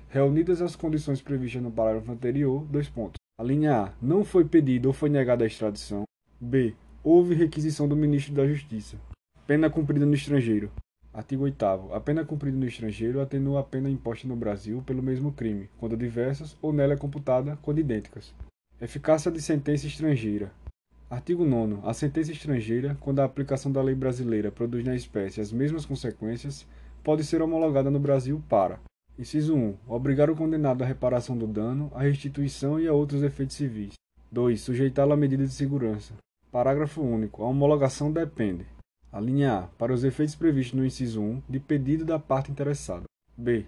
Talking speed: 170 wpm